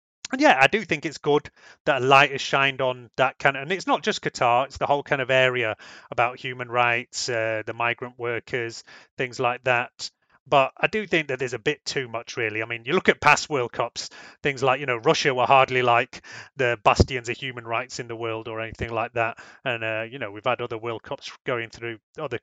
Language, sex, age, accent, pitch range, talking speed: English, male, 30-49, British, 120-145 Hz, 235 wpm